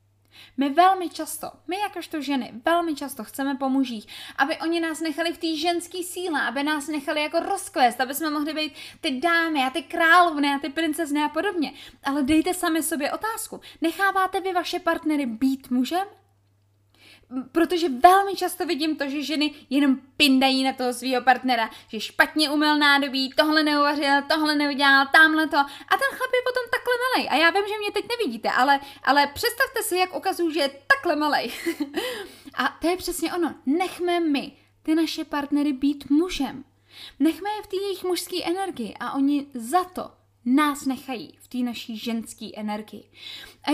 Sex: female